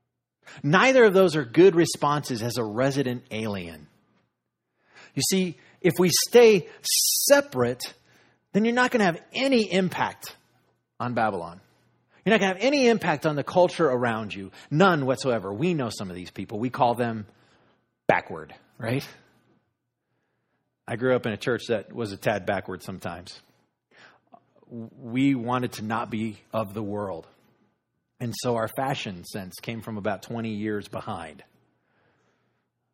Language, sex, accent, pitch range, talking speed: English, male, American, 110-160 Hz, 150 wpm